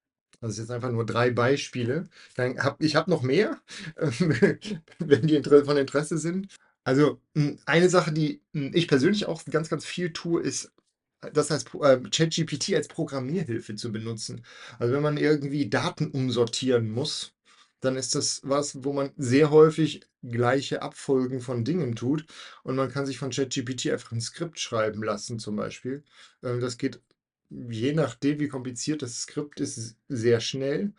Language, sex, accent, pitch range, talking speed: German, male, German, 120-150 Hz, 155 wpm